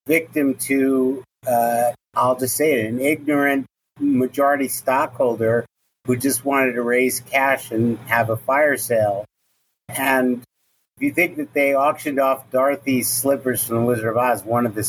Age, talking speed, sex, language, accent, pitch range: 50-69, 160 wpm, male, English, American, 120-145 Hz